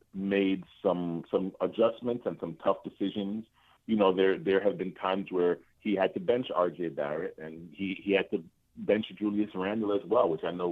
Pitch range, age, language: 85-120 Hz, 40-59, English